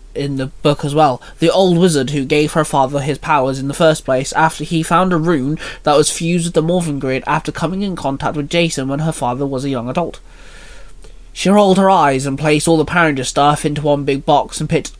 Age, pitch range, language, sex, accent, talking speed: 20-39, 140-175 Hz, English, male, British, 235 wpm